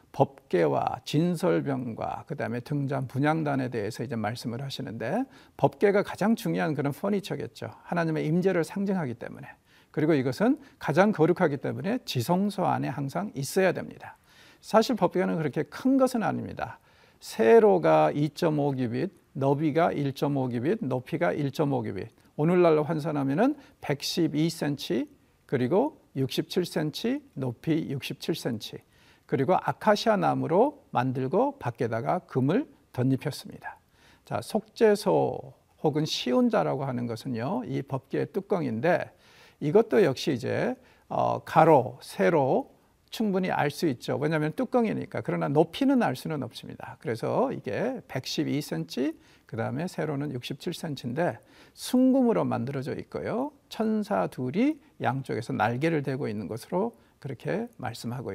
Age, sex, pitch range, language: 50-69, male, 135-195 Hz, Korean